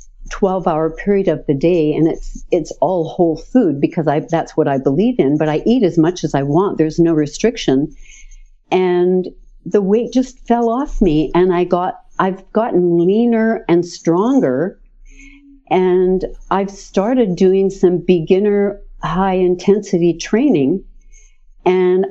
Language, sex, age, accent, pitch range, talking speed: English, female, 60-79, American, 165-215 Hz, 145 wpm